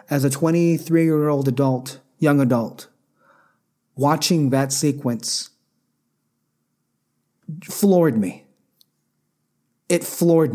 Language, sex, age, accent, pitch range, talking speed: English, male, 30-49, American, 135-165 Hz, 75 wpm